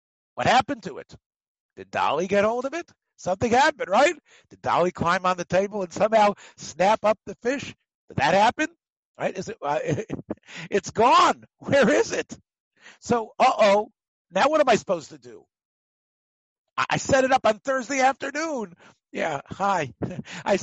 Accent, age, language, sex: American, 60-79, English, male